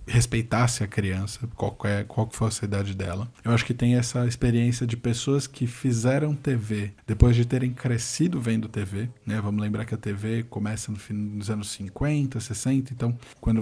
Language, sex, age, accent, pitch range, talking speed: Portuguese, male, 20-39, Brazilian, 100-115 Hz, 180 wpm